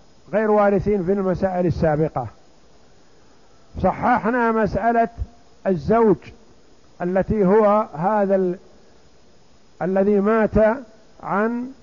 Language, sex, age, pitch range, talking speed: Arabic, male, 50-69, 190-225 Hz, 75 wpm